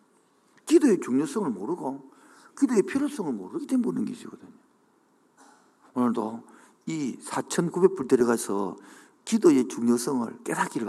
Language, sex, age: Korean, male, 50-69